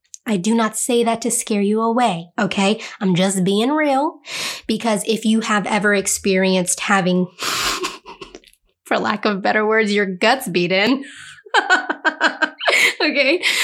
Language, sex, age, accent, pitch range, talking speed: English, female, 20-39, American, 195-240 Hz, 135 wpm